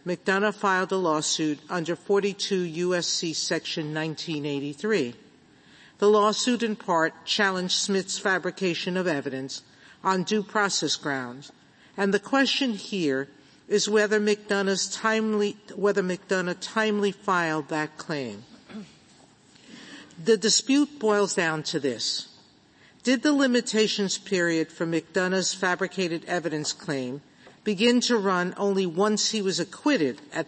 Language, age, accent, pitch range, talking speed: English, 50-69, American, 160-205 Hz, 115 wpm